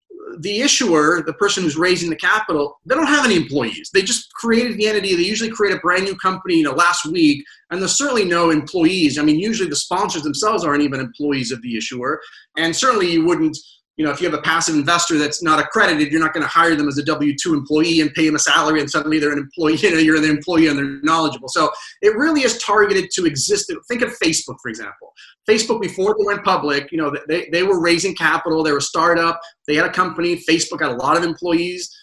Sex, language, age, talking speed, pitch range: male, English, 30-49, 235 wpm, 150-195 Hz